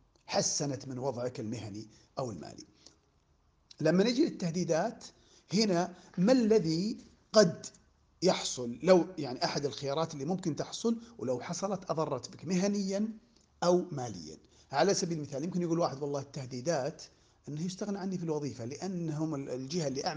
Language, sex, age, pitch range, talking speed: Arabic, male, 40-59, 145-195 Hz, 130 wpm